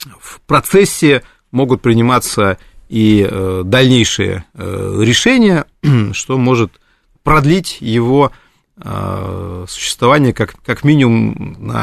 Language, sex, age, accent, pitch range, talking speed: Russian, male, 30-49, native, 105-150 Hz, 70 wpm